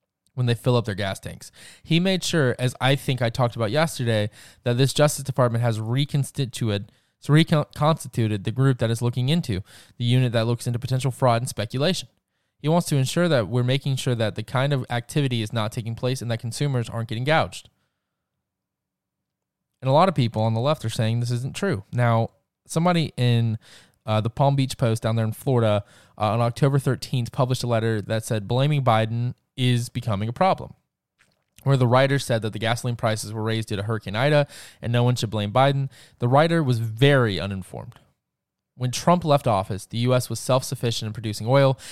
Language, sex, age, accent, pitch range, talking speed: English, male, 20-39, American, 115-135 Hz, 200 wpm